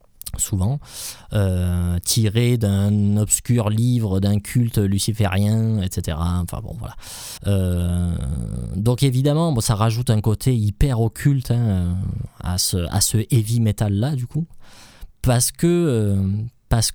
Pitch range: 100-125 Hz